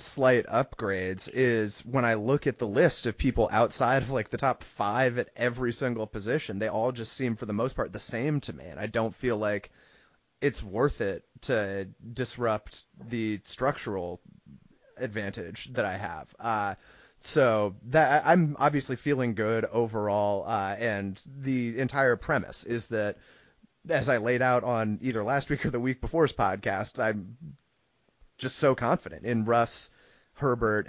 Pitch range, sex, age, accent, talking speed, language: 105-130 Hz, male, 30-49, American, 165 wpm, English